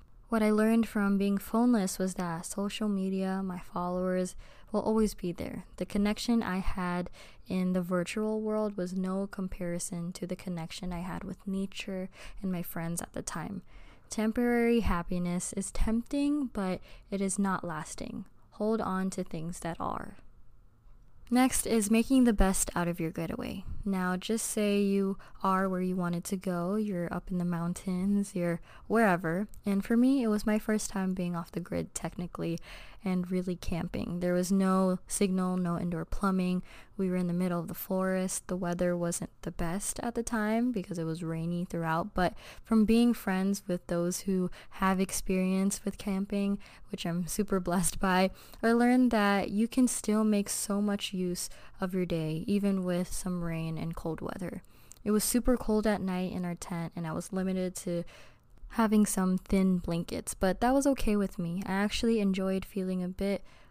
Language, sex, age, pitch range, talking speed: English, female, 20-39, 180-210 Hz, 180 wpm